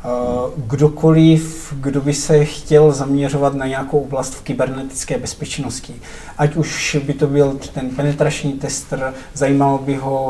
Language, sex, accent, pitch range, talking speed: Czech, male, native, 135-150 Hz, 135 wpm